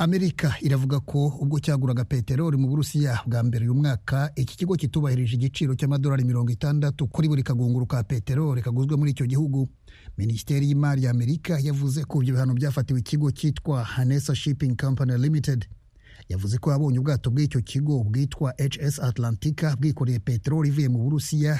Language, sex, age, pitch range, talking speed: English, male, 30-49, 125-145 Hz, 140 wpm